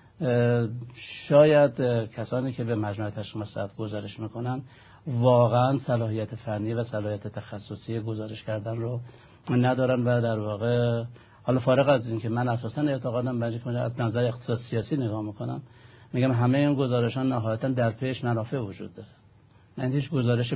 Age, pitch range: 60-79, 110-130 Hz